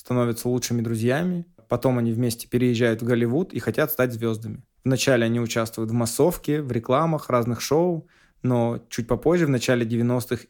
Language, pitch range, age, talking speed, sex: Russian, 120-135 Hz, 20-39, 160 wpm, male